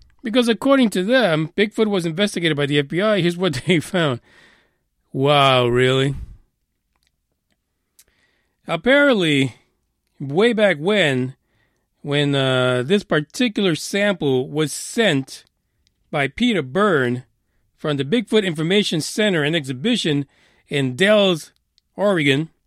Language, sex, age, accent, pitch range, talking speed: English, male, 40-59, American, 130-210 Hz, 105 wpm